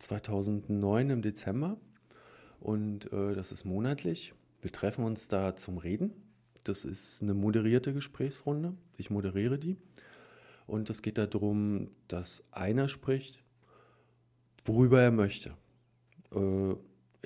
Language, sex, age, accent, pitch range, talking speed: German, male, 40-59, German, 105-130 Hz, 115 wpm